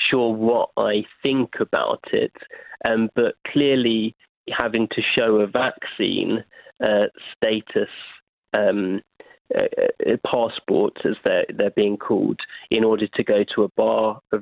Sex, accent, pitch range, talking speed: male, British, 110-130 Hz, 135 wpm